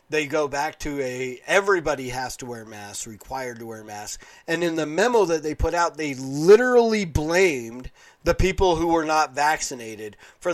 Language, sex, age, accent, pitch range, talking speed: English, male, 40-59, American, 135-185 Hz, 180 wpm